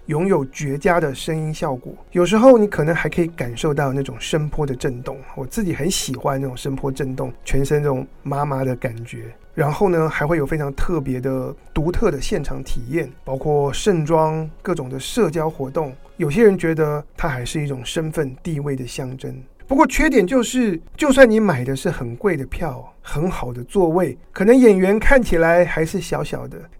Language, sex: Chinese, male